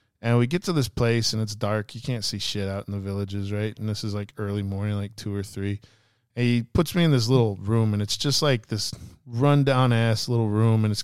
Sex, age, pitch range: male, 20-39, 105-125 Hz